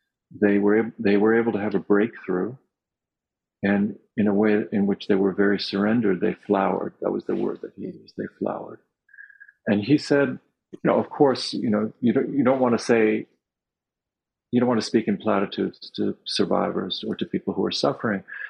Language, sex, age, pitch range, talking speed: English, male, 50-69, 100-125 Hz, 190 wpm